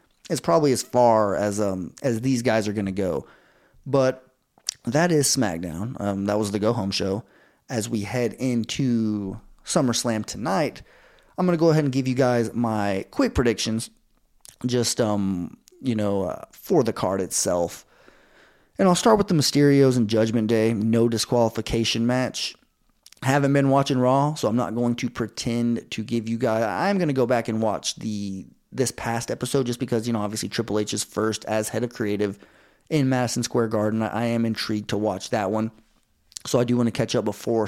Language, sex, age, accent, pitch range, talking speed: English, male, 30-49, American, 110-130 Hz, 185 wpm